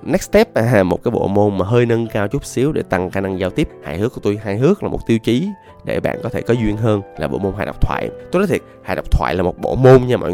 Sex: male